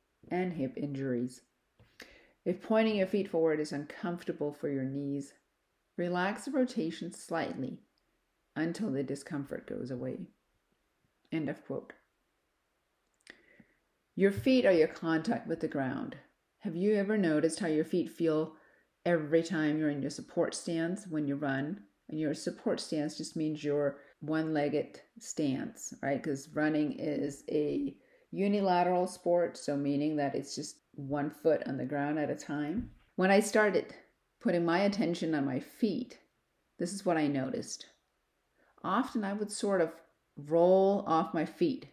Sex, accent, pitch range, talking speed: female, American, 145-185 Hz, 145 wpm